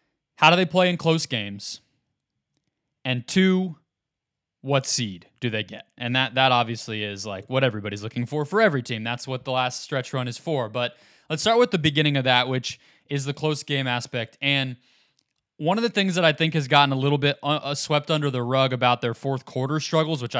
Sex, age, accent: male, 20-39, American